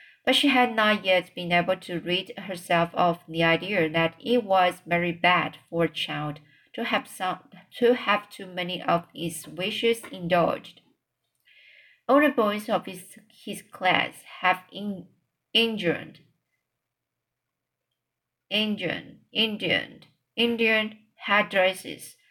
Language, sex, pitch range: Chinese, female, 170-215 Hz